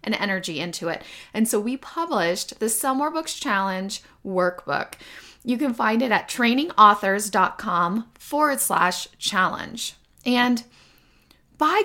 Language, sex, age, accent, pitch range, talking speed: English, female, 30-49, American, 190-255 Hz, 115 wpm